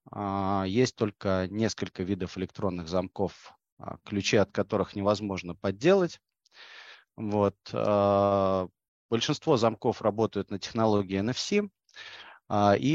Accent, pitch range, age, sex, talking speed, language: native, 95-120 Hz, 30-49, male, 85 wpm, Russian